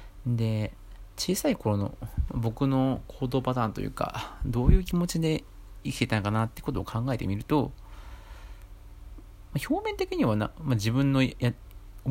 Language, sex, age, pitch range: Japanese, male, 40-59, 100-140 Hz